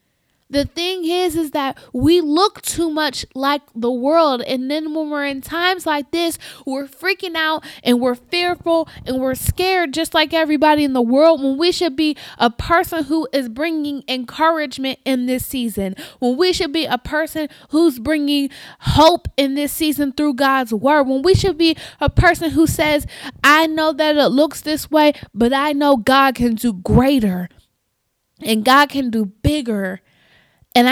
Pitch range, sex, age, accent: 255-315 Hz, female, 20-39, American